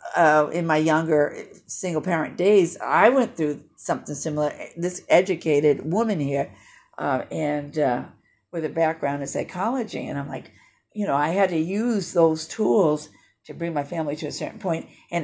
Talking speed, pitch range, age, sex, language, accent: 175 wpm, 135-165 Hz, 50-69, female, English, American